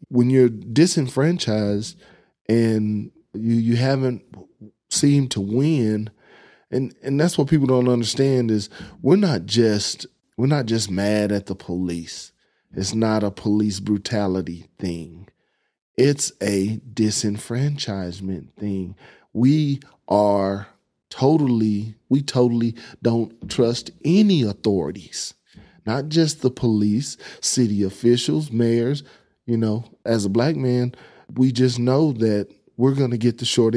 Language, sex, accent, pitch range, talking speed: English, male, American, 105-140 Hz, 125 wpm